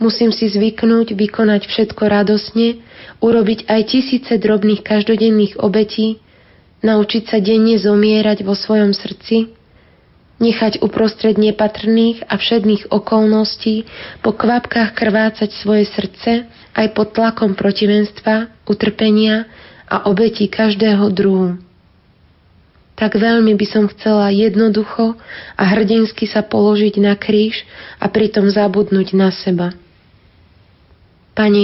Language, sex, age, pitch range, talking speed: Slovak, female, 20-39, 205-220 Hz, 110 wpm